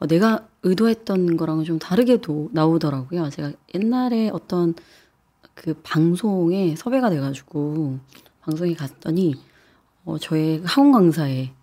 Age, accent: 30-49, native